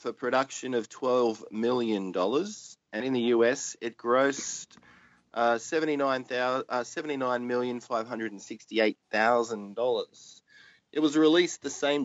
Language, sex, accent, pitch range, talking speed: English, male, Australian, 110-135 Hz, 95 wpm